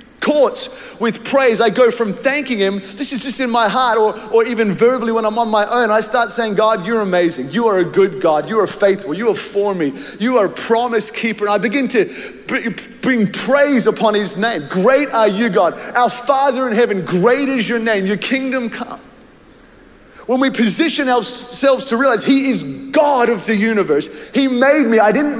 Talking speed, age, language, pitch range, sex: 205 wpm, 30-49, English, 215-260 Hz, male